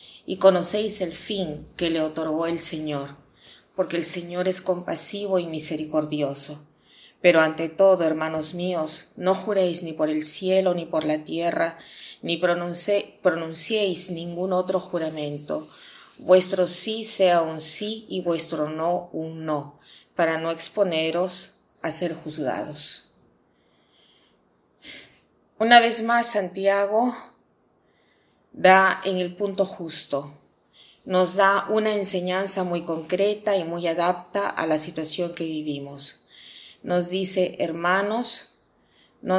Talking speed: 120 wpm